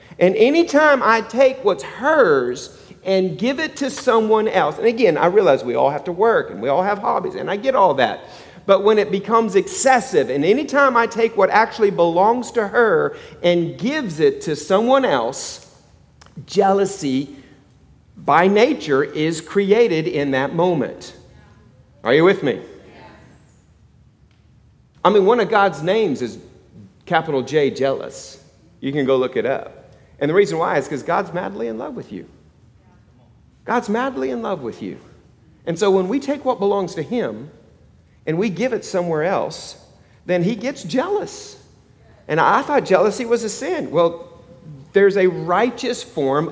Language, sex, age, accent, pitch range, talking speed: English, male, 40-59, American, 165-240 Hz, 170 wpm